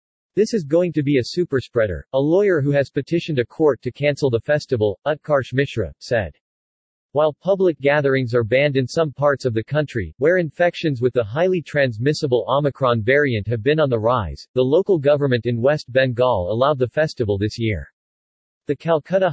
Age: 40-59